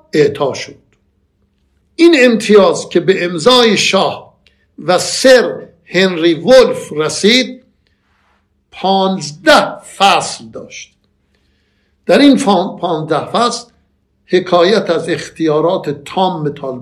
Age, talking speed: 60-79, 90 wpm